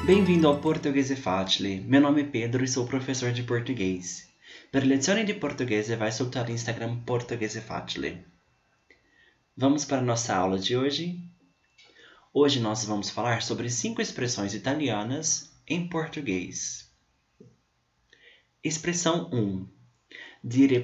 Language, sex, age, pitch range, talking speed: Italian, male, 20-39, 105-145 Hz, 130 wpm